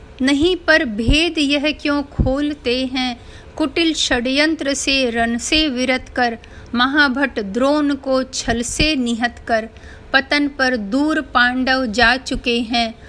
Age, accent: 50-69, native